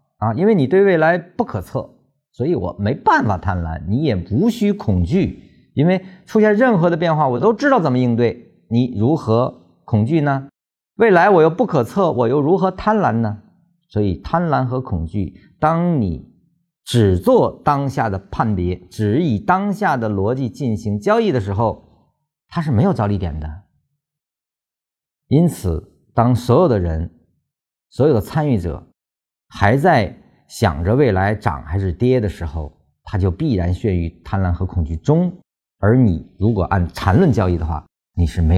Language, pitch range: Chinese, 85-135 Hz